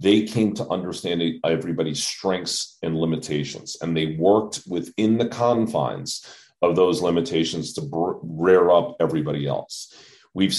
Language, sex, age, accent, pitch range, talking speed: English, male, 40-59, American, 85-105 Hz, 130 wpm